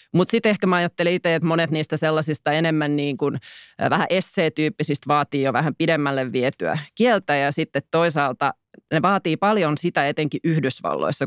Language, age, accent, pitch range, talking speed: Finnish, 30-49, native, 155-200 Hz, 160 wpm